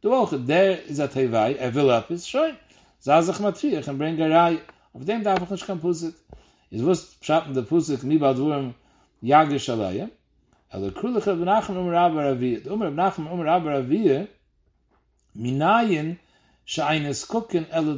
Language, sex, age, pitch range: English, male, 60-79, 135-195 Hz